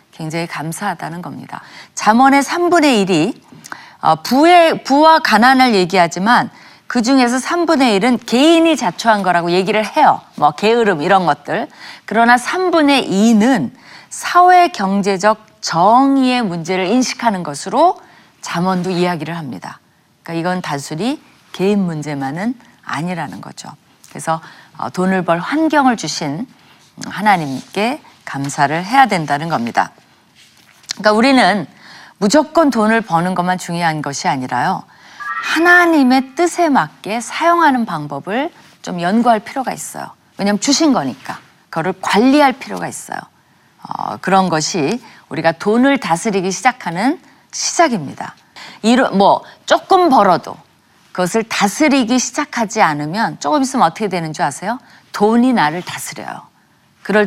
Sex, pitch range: female, 175-270 Hz